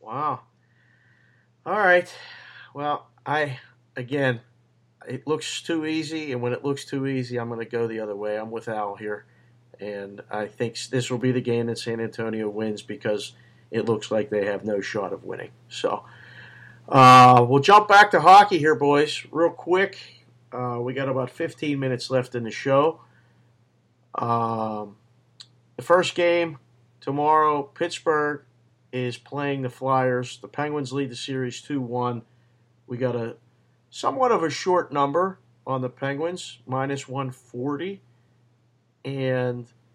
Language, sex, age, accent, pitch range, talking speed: English, male, 40-59, American, 120-140 Hz, 150 wpm